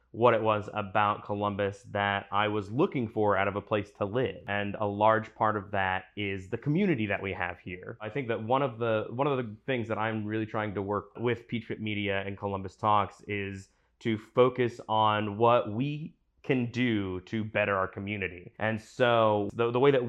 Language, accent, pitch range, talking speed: English, American, 105-125 Hz, 210 wpm